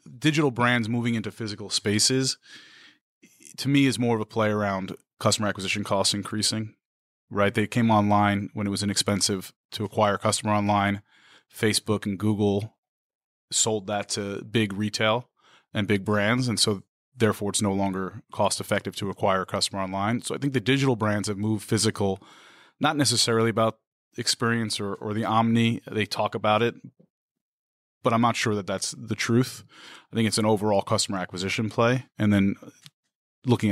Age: 30-49